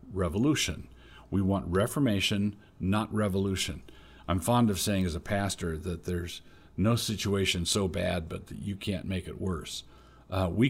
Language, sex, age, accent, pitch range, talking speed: English, male, 50-69, American, 90-105 Hz, 155 wpm